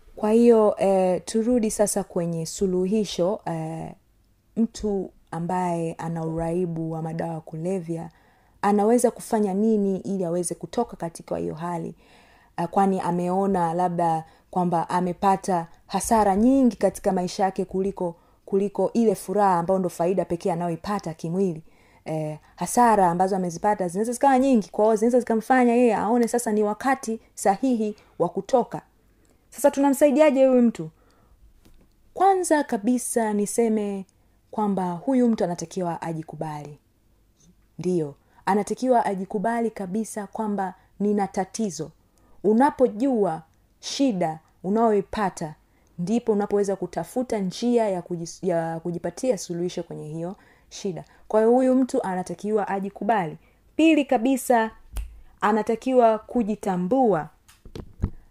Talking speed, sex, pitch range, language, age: 110 wpm, female, 170-225 Hz, Swahili, 30-49